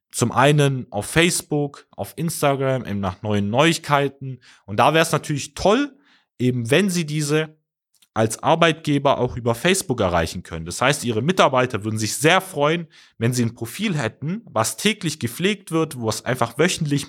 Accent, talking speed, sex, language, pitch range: German, 170 wpm, male, German, 115-155 Hz